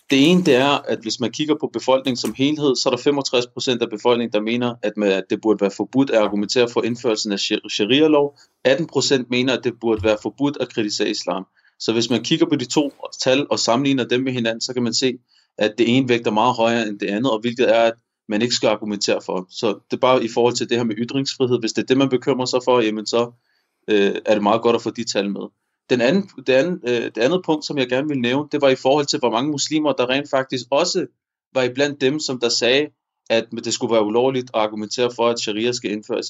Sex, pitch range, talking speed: male, 115-135 Hz, 245 wpm